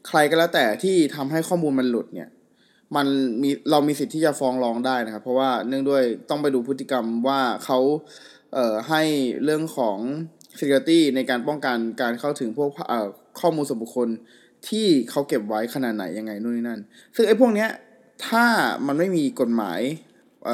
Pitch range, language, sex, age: 125-165 Hz, Thai, male, 20-39